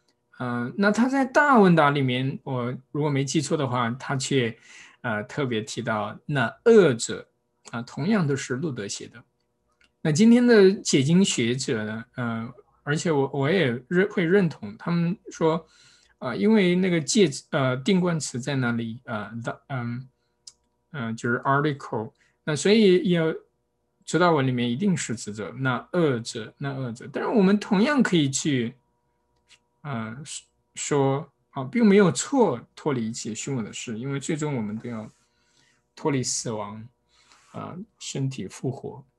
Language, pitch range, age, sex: Chinese, 120-175 Hz, 20-39, male